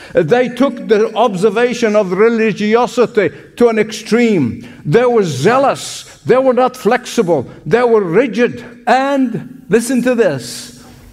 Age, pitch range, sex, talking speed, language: 60-79, 180-245 Hz, male, 125 wpm, English